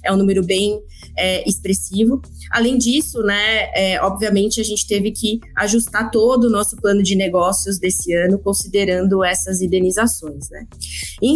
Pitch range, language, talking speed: 190-230 Hz, Portuguese, 155 wpm